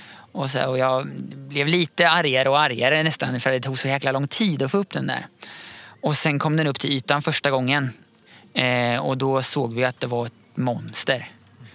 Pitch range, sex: 130-155 Hz, male